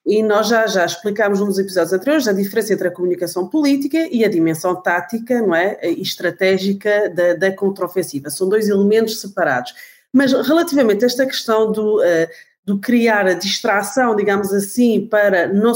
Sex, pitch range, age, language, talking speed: female, 190-260 Hz, 30-49, Portuguese, 170 wpm